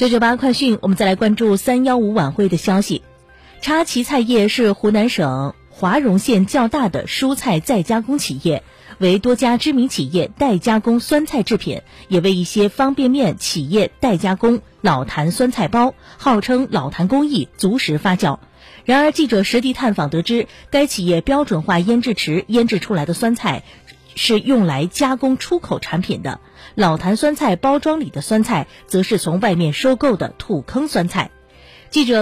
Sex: female